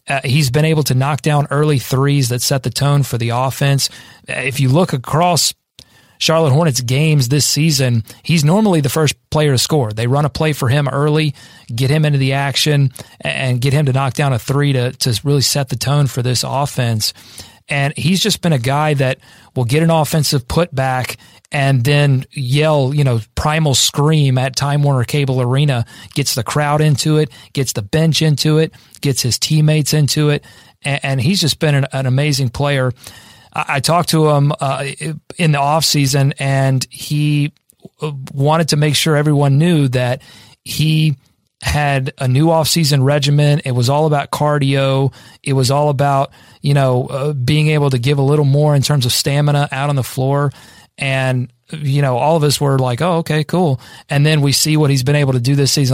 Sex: male